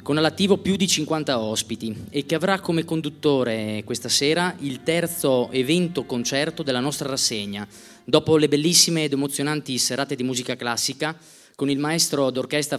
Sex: male